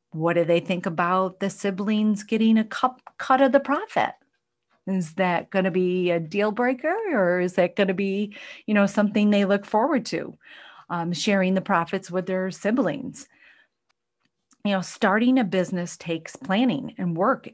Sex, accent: female, American